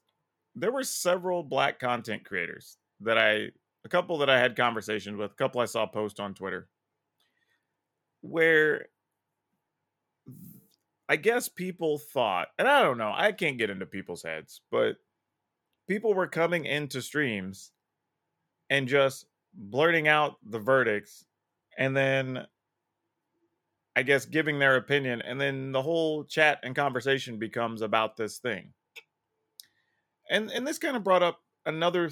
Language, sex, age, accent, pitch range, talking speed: English, male, 30-49, American, 125-170 Hz, 140 wpm